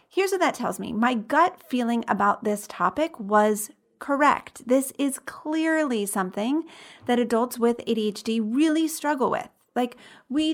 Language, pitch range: English, 210-275 Hz